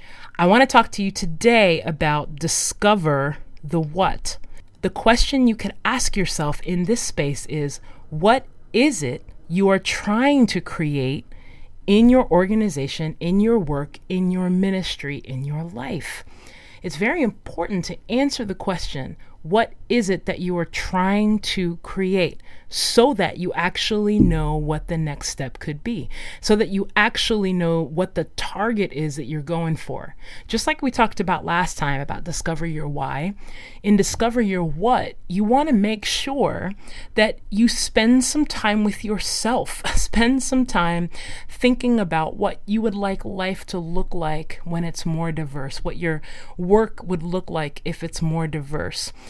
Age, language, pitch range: 30-49, English, 155-215 Hz